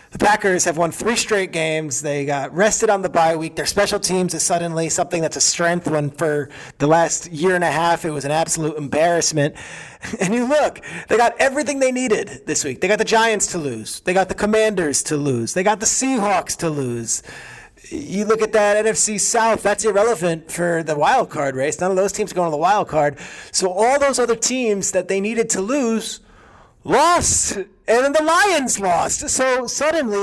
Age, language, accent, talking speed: 30-49, English, American, 210 wpm